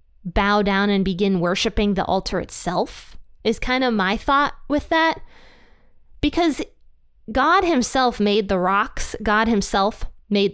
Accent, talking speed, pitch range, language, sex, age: American, 135 wpm, 190-230 Hz, English, female, 20-39